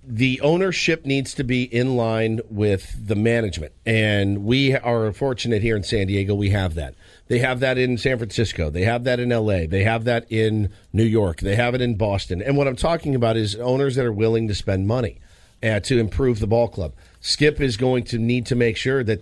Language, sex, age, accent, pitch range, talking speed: English, male, 50-69, American, 105-130 Hz, 220 wpm